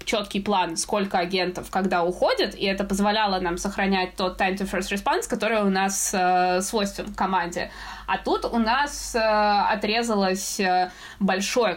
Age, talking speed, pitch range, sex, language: 20-39, 155 wpm, 190-230 Hz, female, Russian